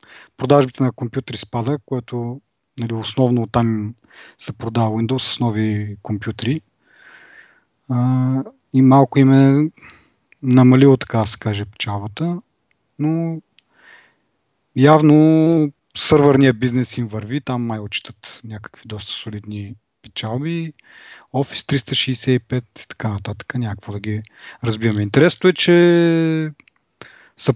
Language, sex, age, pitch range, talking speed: Bulgarian, male, 30-49, 115-140 Hz, 105 wpm